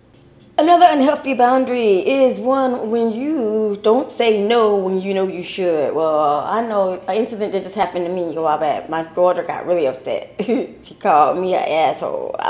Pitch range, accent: 215-290 Hz, American